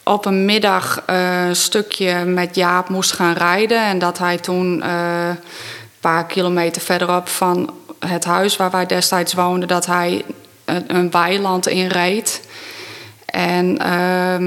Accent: Dutch